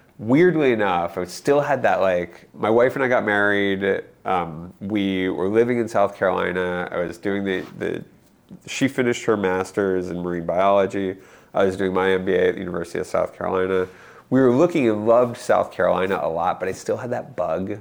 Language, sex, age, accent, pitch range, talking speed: English, male, 30-49, American, 90-110 Hz, 195 wpm